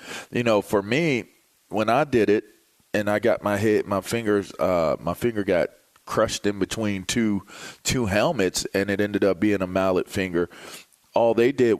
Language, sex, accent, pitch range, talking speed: English, male, American, 90-105 Hz, 185 wpm